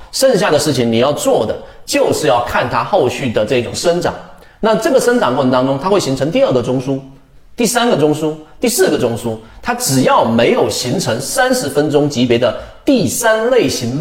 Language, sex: Chinese, male